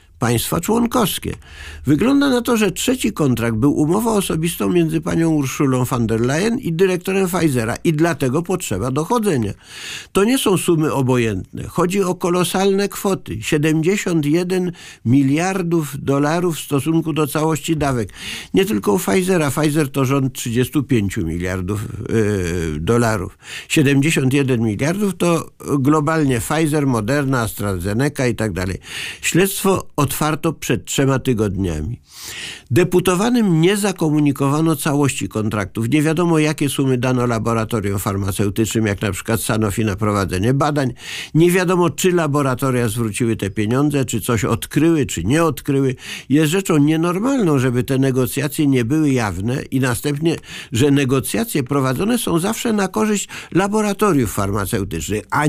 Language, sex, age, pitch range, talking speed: Polish, male, 50-69, 115-170 Hz, 130 wpm